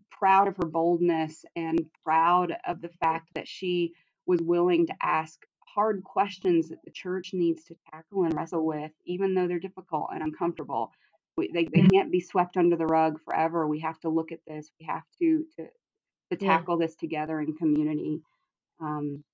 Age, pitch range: 30-49, 160-195 Hz